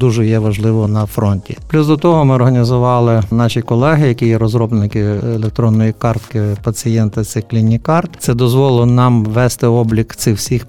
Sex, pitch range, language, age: male, 110-130 Hz, Ukrainian, 50-69